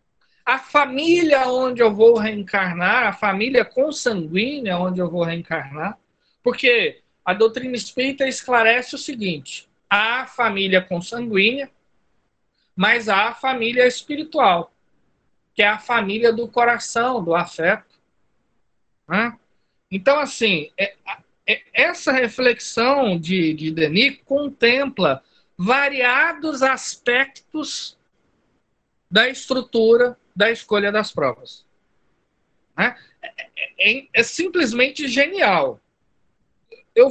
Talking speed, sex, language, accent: 95 wpm, male, Portuguese, Brazilian